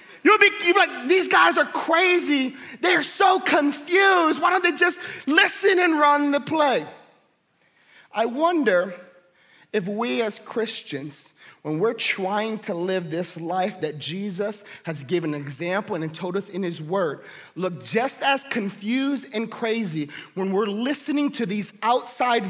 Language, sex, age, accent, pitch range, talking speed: English, male, 30-49, American, 235-350 Hz, 150 wpm